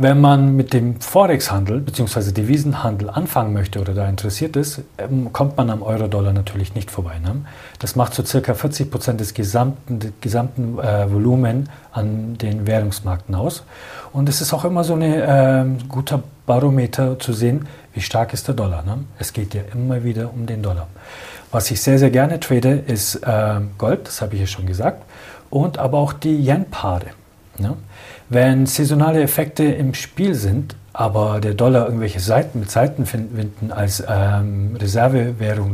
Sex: male